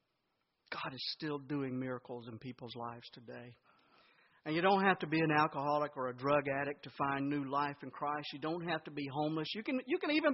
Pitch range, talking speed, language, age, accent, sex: 140-230 Hz, 215 wpm, English, 50-69, American, male